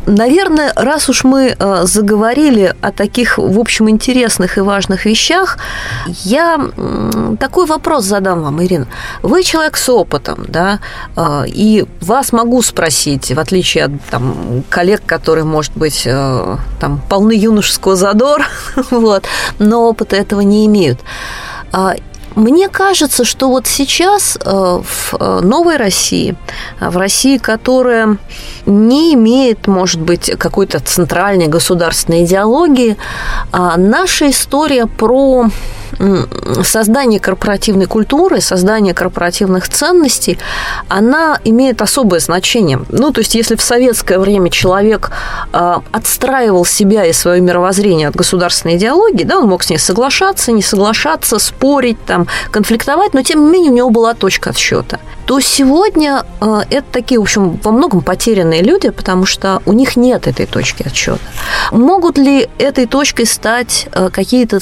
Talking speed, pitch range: 130 wpm, 185-260 Hz